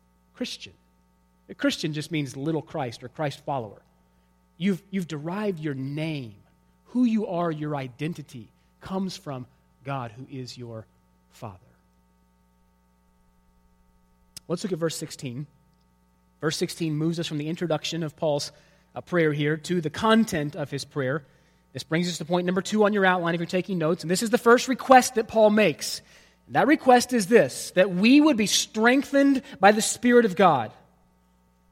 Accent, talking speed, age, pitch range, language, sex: American, 165 wpm, 30-49, 140-225 Hz, English, male